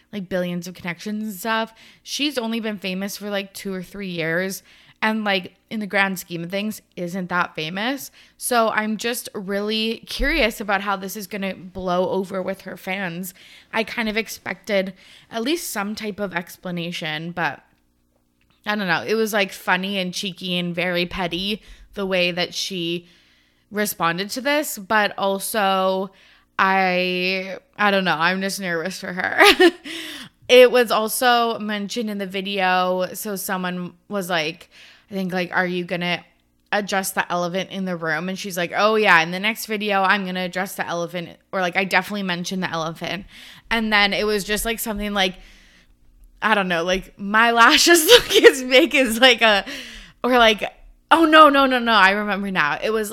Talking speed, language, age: 180 wpm, English, 20-39